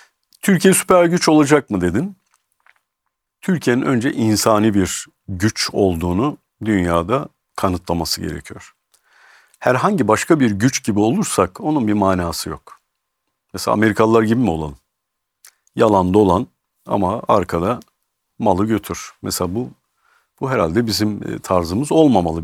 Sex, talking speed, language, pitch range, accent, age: male, 115 wpm, Turkish, 90-120 Hz, native, 50-69